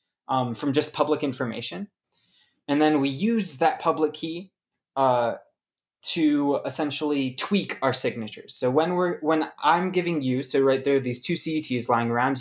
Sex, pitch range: male, 120-170 Hz